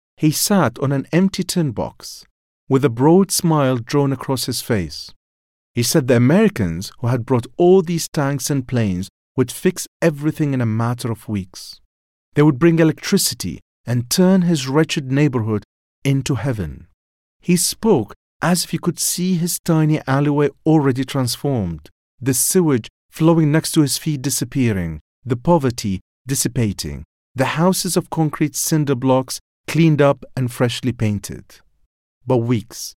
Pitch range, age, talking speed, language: 105-150 Hz, 40-59, 150 wpm, English